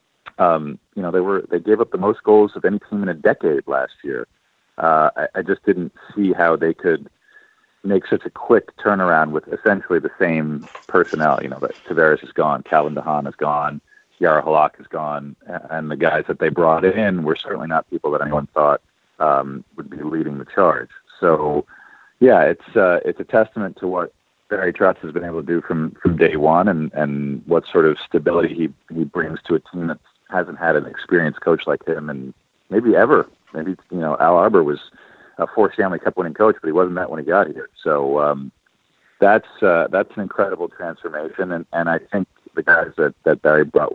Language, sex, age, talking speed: English, male, 40-59, 210 wpm